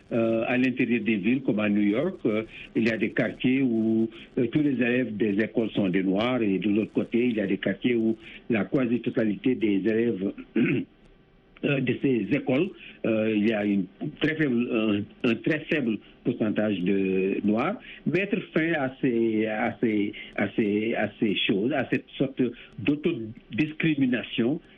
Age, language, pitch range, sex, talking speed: 60-79, French, 110-130 Hz, male, 170 wpm